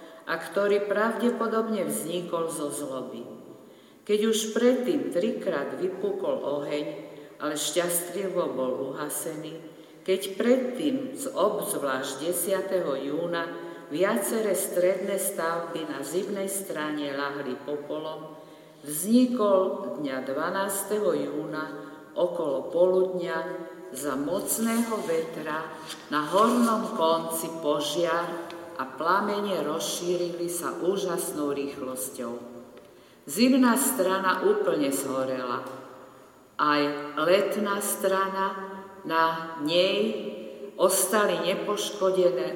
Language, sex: Slovak, female